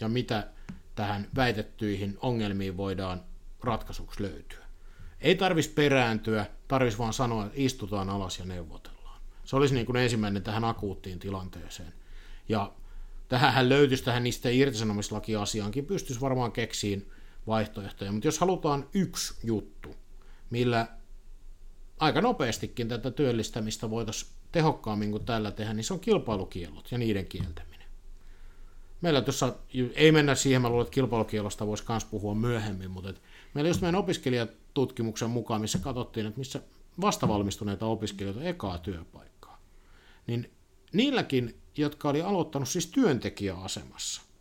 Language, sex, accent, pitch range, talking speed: Finnish, male, native, 95-135 Hz, 130 wpm